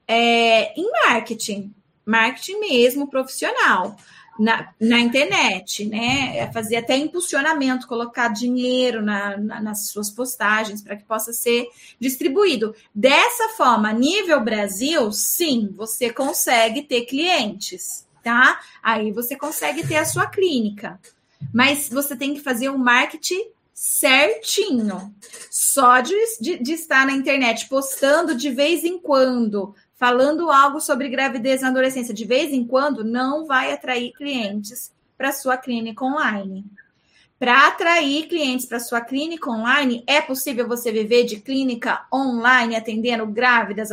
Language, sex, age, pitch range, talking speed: Portuguese, female, 20-39, 225-280 Hz, 130 wpm